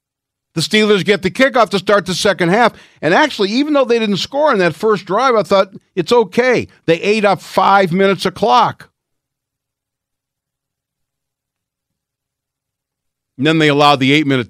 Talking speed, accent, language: 155 wpm, American, English